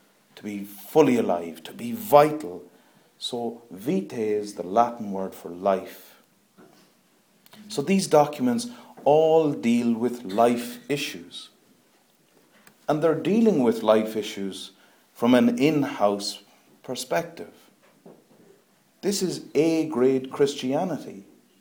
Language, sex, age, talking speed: English, male, 40-59, 105 wpm